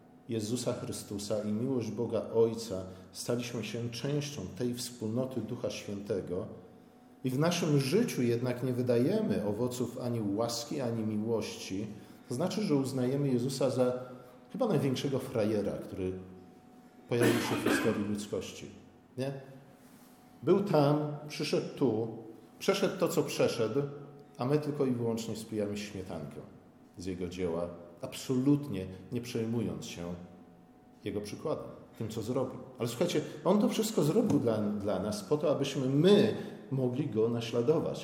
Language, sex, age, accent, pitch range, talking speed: Polish, male, 40-59, native, 115-145 Hz, 135 wpm